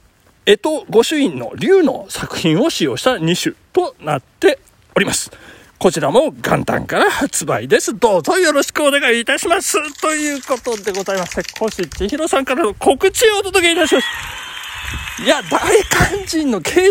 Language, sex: Japanese, male